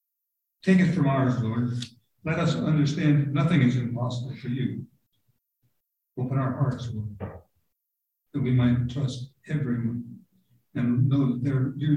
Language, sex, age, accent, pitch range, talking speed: English, male, 60-79, American, 125-145 Hz, 130 wpm